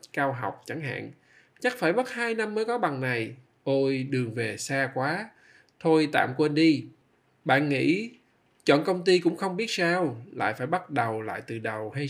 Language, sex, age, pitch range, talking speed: Vietnamese, male, 20-39, 130-165 Hz, 195 wpm